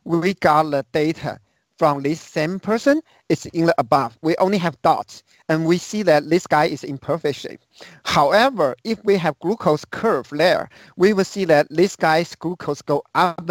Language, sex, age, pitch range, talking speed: English, male, 50-69, 150-185 Hz, 185 wpm